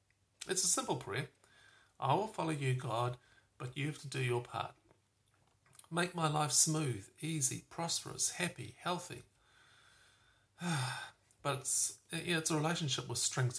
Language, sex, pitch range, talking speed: English, male, 110-140 Hz, 145 wpm